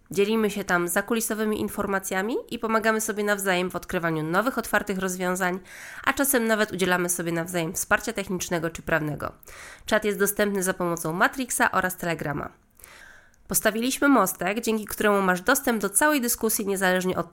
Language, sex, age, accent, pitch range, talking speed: Polish, female, 20-39, native, 175-220 Hz, 150 wpm